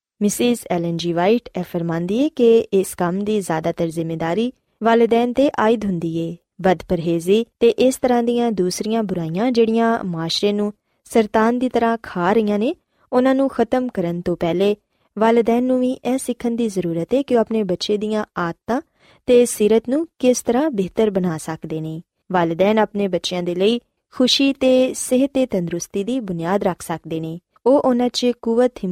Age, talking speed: 20-39, 35 wpm